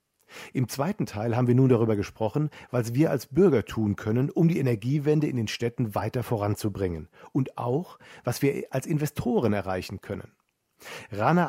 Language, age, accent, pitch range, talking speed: German, 50-69, German, 110-140 Hz, 160 wpm